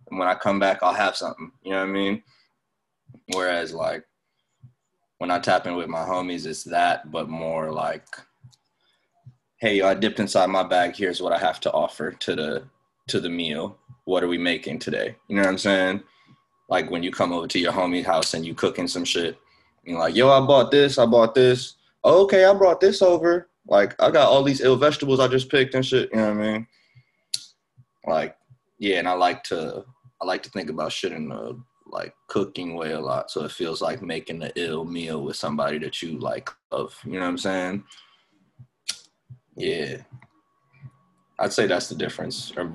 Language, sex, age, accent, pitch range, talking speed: English, male, 20-39, American, 90-130 Hz, 200 wpm